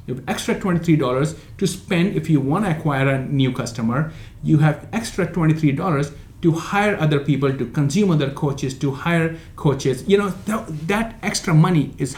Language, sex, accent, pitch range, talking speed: English, male, Indian, 130-165 Hz, 180 wpm